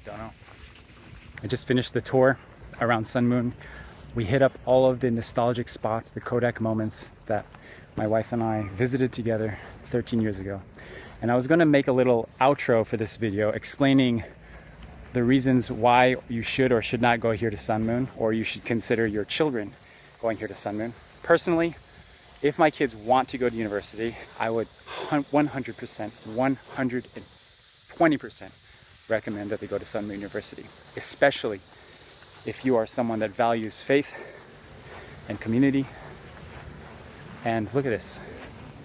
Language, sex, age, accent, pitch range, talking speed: English, male, 20-39, American, 110-130 Hz, 155 wpm